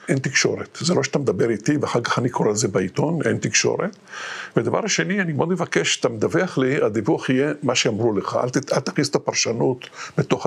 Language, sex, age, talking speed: Hebrew, male, 50-69, 190 wpm